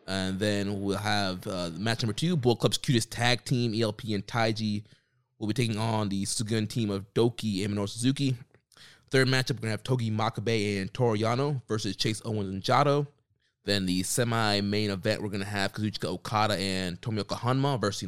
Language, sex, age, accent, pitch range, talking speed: English, male, 20-39, American, 95-120 Hz, 195 wpm